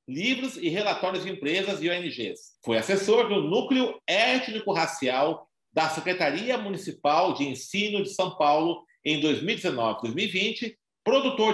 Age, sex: 50-69, male